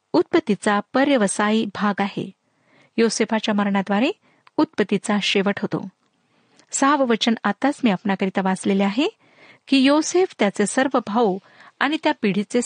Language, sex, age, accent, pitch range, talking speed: Marathi, female, 50-69, native, 205-270 Hz, 115 wpm